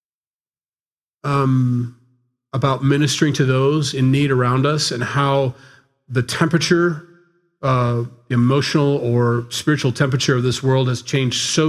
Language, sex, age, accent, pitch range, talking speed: English, male, 40-59, American, 125-145 Hz, 125 wpm